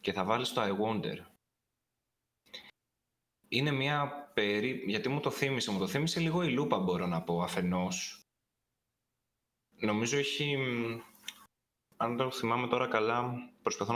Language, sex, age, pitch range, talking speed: Greek, male, 20-39, 100-130 Hz, 135 wpm